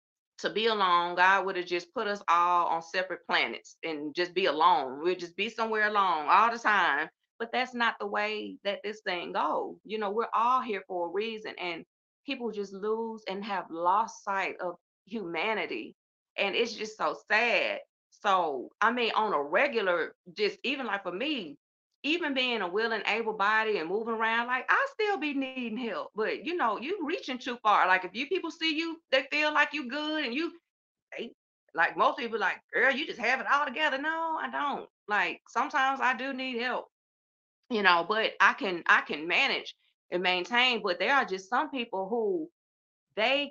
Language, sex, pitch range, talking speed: English, female, 190-280 Hz, 195 wpm